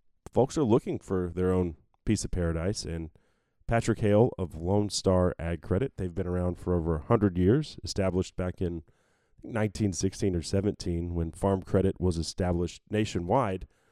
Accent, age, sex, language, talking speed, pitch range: American, 30-49, male, English, 155 wpm, 90-110 Hz